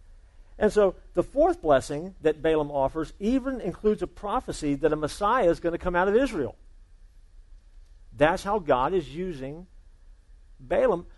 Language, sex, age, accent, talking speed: English, male, 50-69, American, 150 wpm